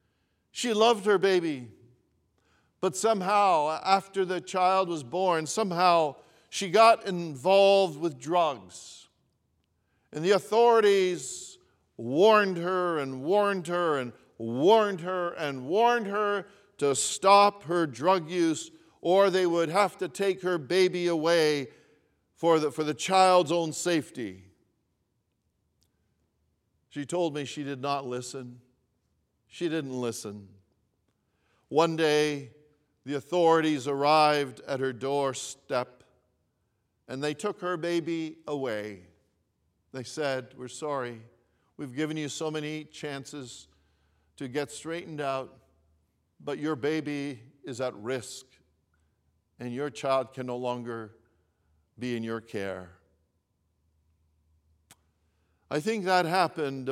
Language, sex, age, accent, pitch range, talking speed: English, male, 50-69, American, 120-175 Hz, 115 wpm